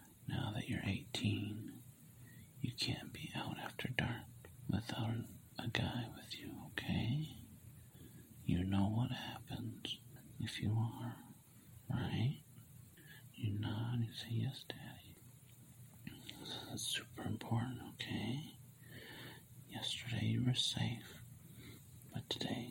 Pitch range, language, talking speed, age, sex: 110-130 Hz, English, 105 wpm, 50-69, male